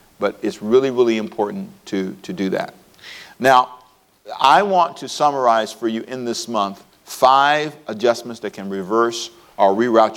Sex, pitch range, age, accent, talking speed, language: male, 110-135 Hz, 50-69, American, 155 wpm, English